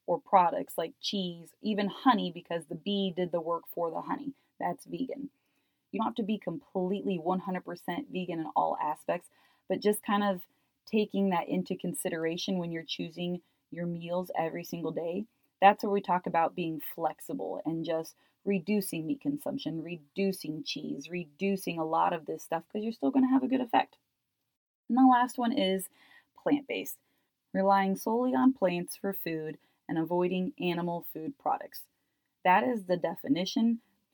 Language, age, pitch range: English, 20-39, 175-215 Hz